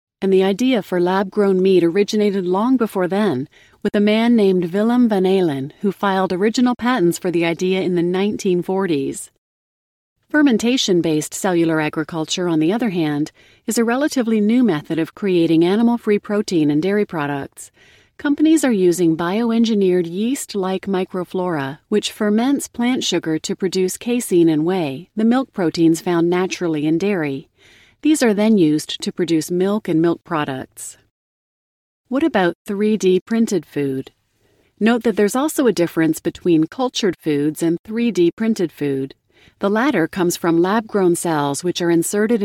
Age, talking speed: 40-59, 150 wpm